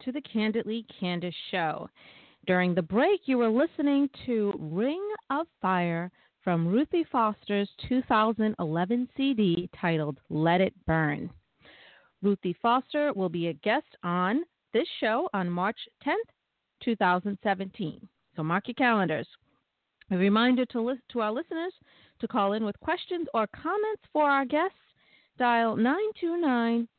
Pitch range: 185-270 Hz